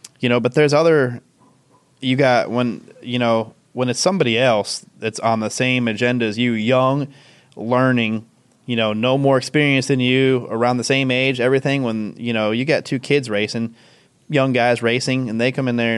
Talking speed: 190 wpm